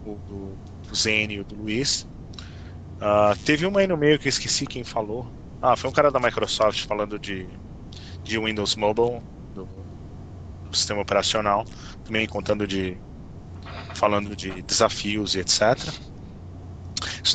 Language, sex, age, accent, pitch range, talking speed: Portuguese, male, 20-39, Brazilian, 95-115 Hz, 145 wpm